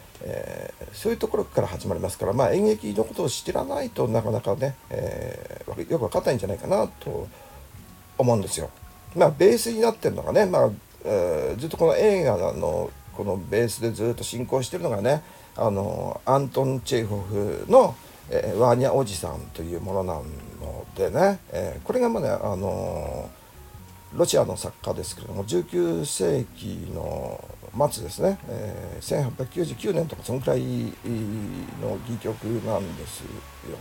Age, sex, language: 50-69, male, Japanese